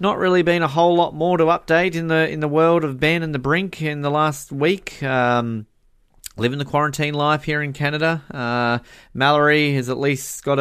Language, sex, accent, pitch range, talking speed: English, male, Australian, 100-150 Hz, 210 wpm